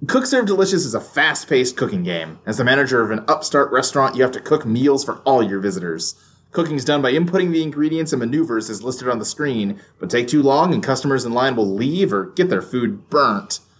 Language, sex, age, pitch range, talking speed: English, male, 30-49, 115-165 Hz, 230 wpm